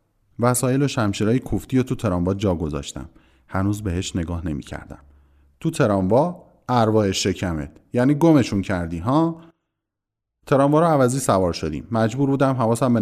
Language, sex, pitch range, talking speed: Persian, male, 90-135 Hz, 140 wpm